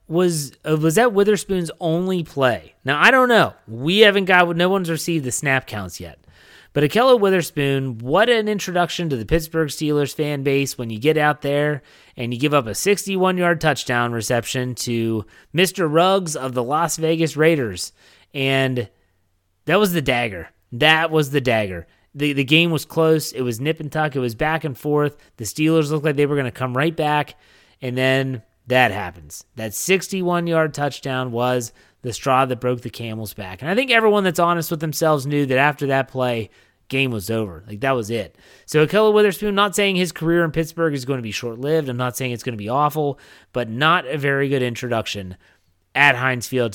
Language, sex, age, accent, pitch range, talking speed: English, male, 30-49, American, 120-165 Hz, 200 wpm